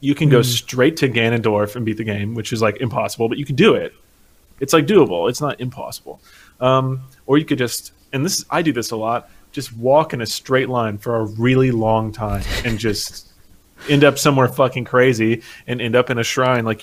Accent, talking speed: American, 225 wpm